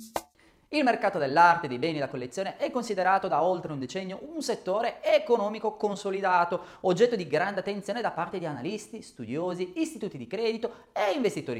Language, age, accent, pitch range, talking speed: Italian, 30-49, native, 155-230 Hz, 160 wpm